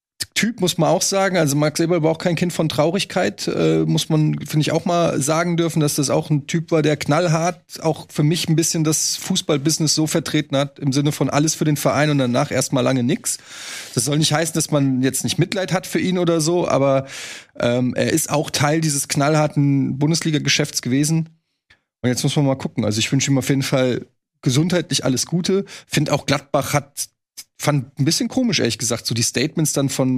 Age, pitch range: 20-39, 130-160 Hz